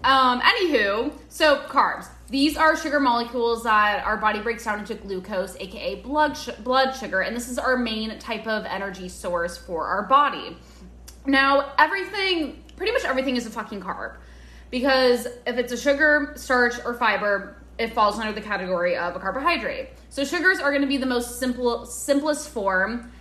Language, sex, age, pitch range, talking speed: English, female, 20-39, 200-270 Hz, 175 wpm